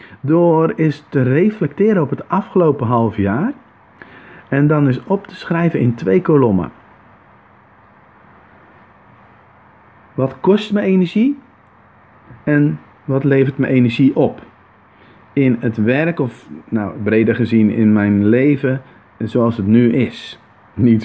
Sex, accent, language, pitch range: male, Dutch, Dutch, 105-140 Hz